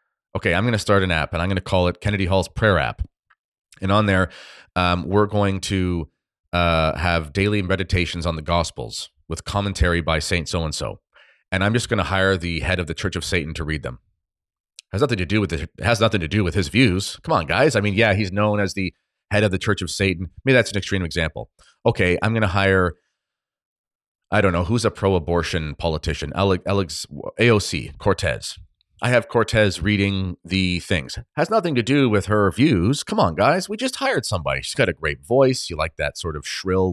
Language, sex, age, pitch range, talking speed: English, male, 30-49, 85-105 Hz, 220 wpm